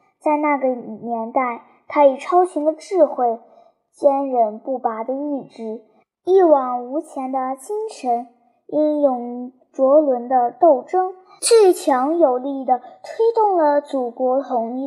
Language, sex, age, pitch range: Chinese, male, 10-29, 255-335 Hz